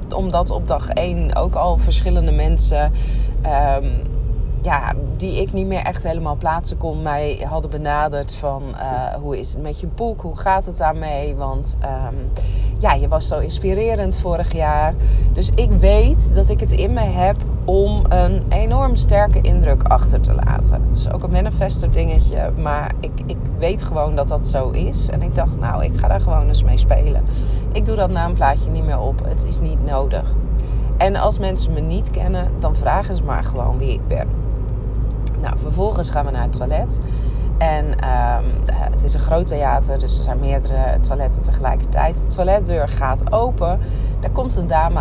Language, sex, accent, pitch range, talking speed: Dutch, female, Dutch, 95-130 Hz, 185 wpm